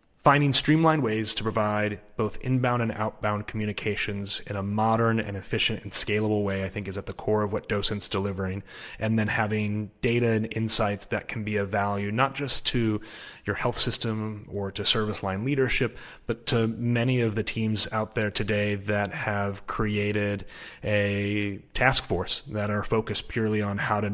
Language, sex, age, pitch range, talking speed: English, male, 30-49, 105-115 Hz, 180 wpm